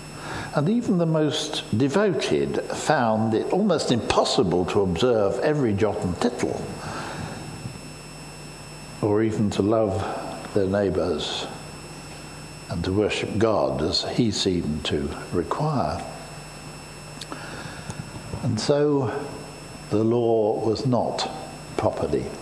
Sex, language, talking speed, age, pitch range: male, English, 100 wpm, 60-79, 105-150 Hz